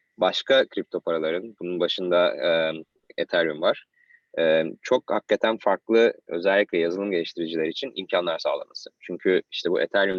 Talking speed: 130 wpm